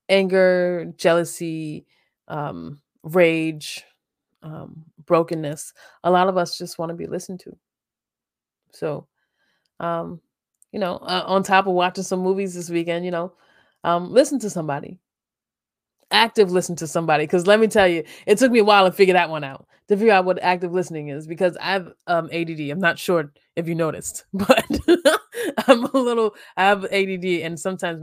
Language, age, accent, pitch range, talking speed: English, 20-39, American, 165-195 Hz, 170 wpm